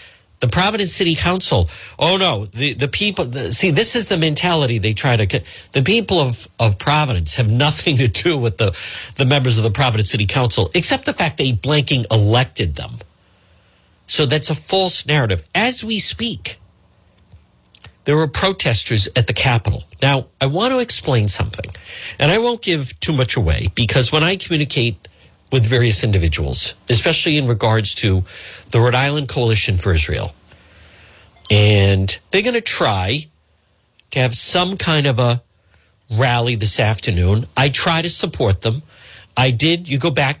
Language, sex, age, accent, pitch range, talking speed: English, male, 50-69, American, 100-150 Hz, 165 wpm